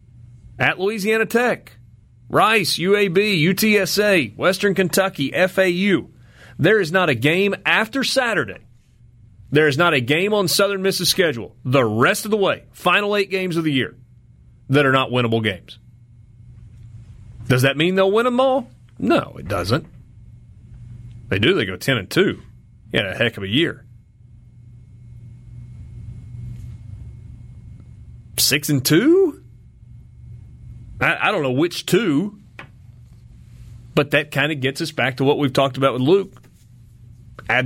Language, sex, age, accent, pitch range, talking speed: English, male, 30-49, American, 115-155 Hz, 140 wpm